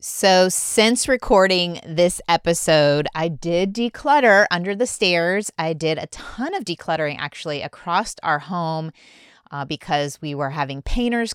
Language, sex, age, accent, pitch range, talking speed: English, female, 30-49, American, 150-200 Hz, 145 wpm